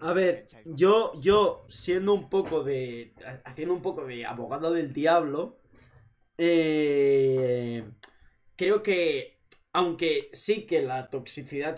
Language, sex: Spanish, male